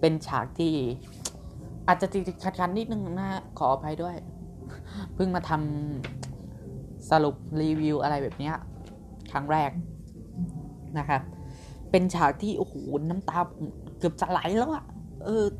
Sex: female